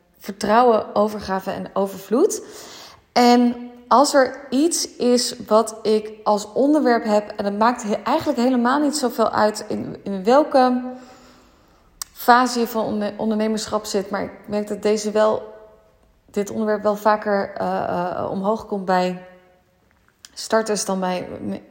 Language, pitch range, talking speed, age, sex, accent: Dutch, 200-245 Hz, 130 wpm, 20-39, female, Dutch